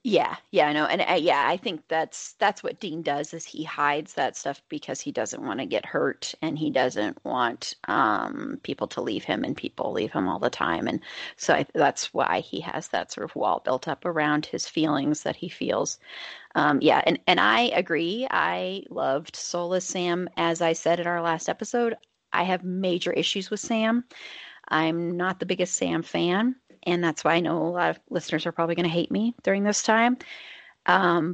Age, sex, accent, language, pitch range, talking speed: 30-49, female, American, English, 170-230 Hz, 205 wpm